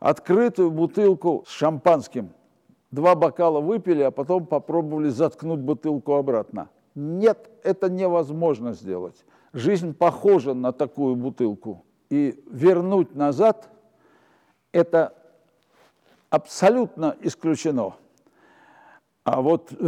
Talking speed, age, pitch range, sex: 90 wpm, 60-79, 145-185 Hz, male